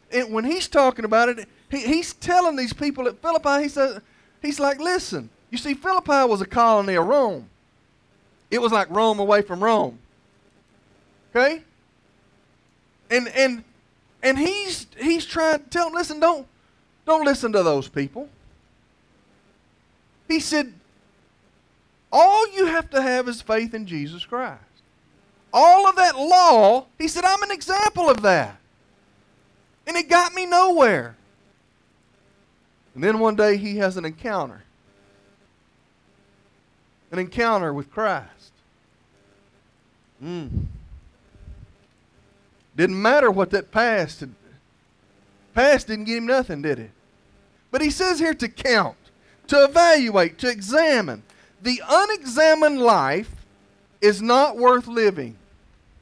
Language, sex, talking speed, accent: English, male, 130 wpm, American